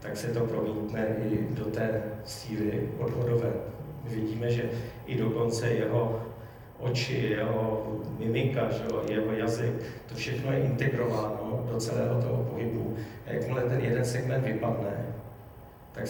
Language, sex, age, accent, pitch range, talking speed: Czech, male, 40-59, native, 110-120 Hz, 125 wpm